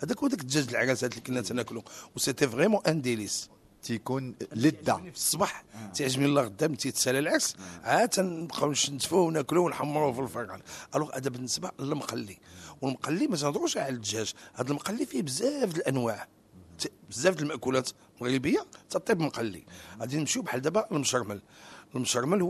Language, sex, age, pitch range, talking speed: English, male, 50-69, 115-150 Hz, 140 wpm